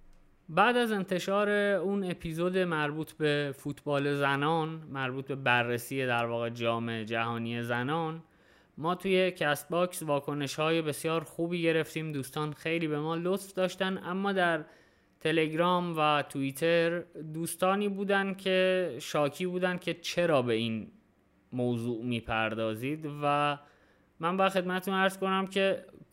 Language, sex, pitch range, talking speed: Persian, male, 135-175 Hz, 125 wpm